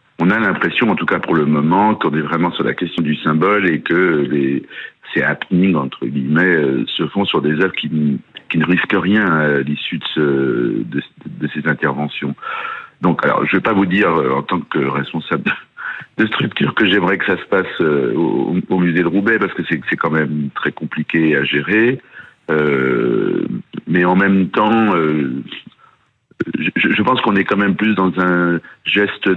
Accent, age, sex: French, 60-79, male